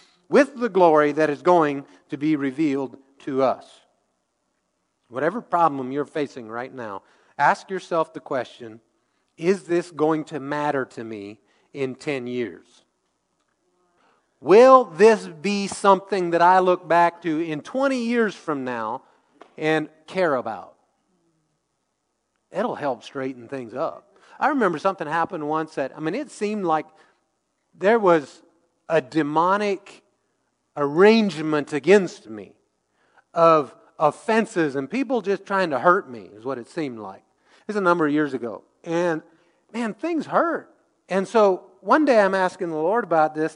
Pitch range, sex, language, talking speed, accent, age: 145-190 Hz, male, English, 145 wpm, American, 40-59